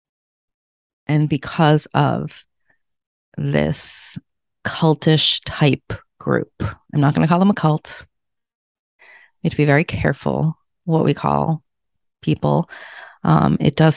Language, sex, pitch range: English, female, 145-175 Hz